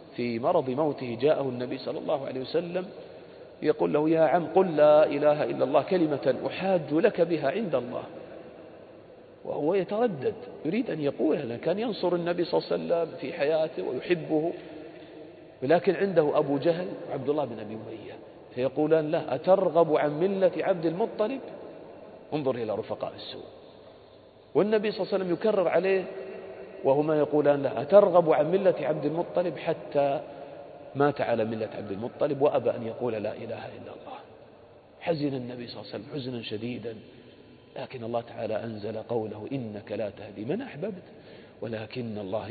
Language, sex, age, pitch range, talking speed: Arabic, male, 40-59, 120-170 Hz, 150 wpm